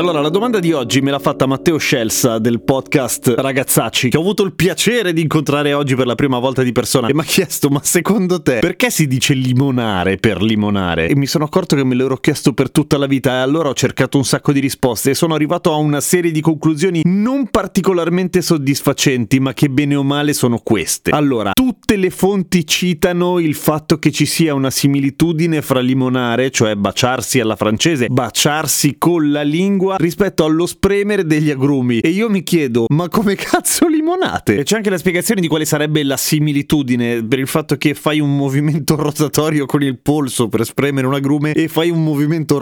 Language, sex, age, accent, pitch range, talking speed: Italian, male, 30-49, native, 130-170 Hz, 200 wpm